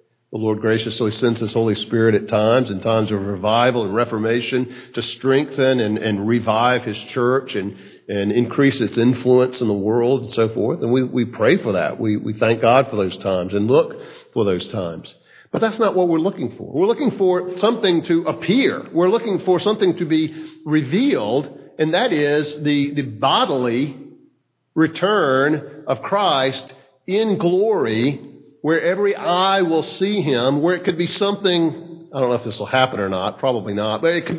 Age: 50-69